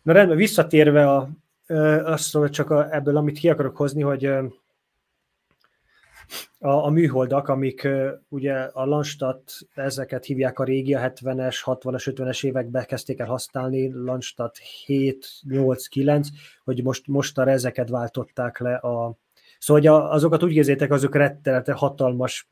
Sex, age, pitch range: male, 20-39, 130-145 Hz